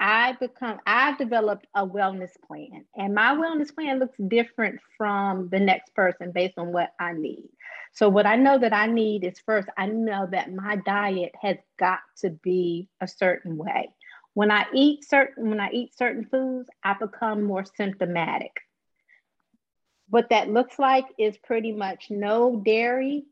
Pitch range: 190-245 Hz